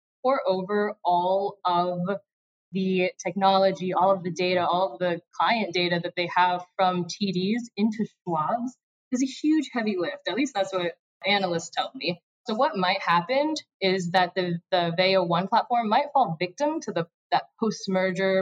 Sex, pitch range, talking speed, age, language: female, 180-215 Hz, 165 wpm, 20-39, English